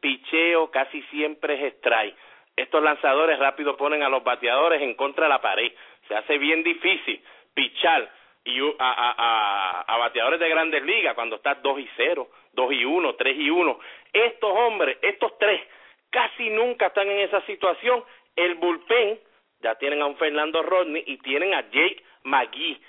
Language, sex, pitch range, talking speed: English, male, 150-220 Hz, 170 wpm